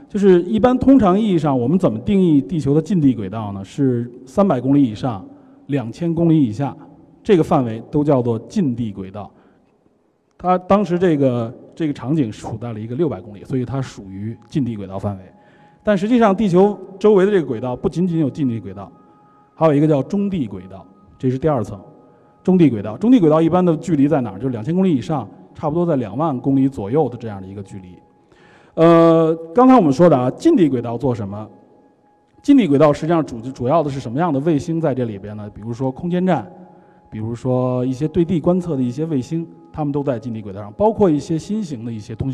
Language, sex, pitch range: Chinese, male, 115-165 Hz